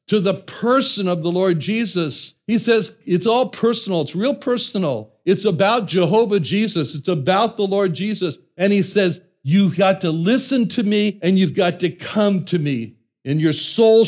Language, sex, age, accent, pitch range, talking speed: English, male, 60-79, American, 160-220 Hz, 185 wpm